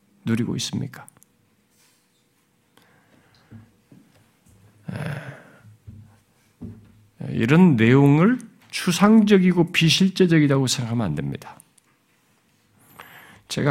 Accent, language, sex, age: native, Korean, male, 50-69